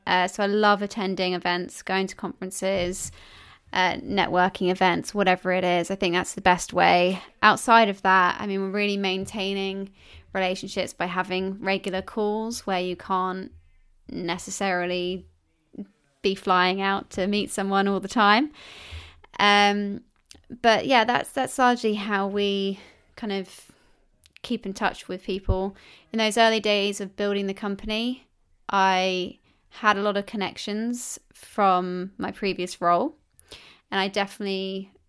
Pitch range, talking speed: 185-205 Hz, 140 wpm